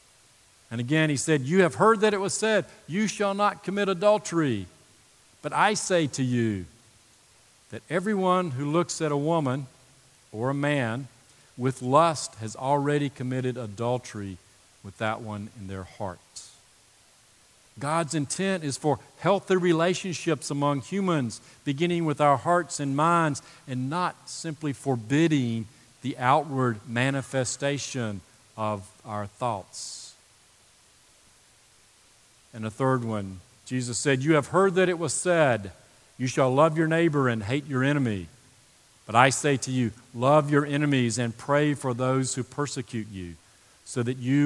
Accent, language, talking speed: American, English, 145 wpm